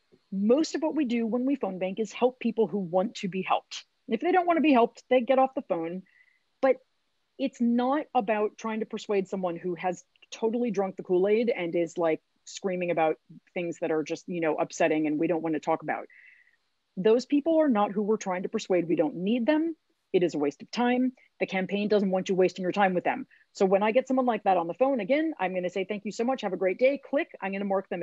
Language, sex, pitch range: English, female, 190-270 Hz